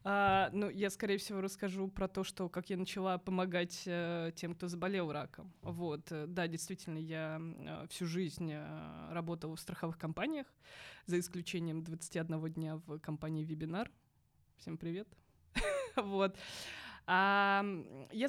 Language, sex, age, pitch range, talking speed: Russian, female, 20-39, 165-195 Hz, 130 wpm